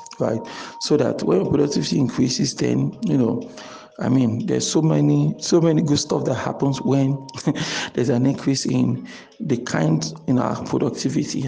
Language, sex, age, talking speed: English, male, 50-69, 155 wpm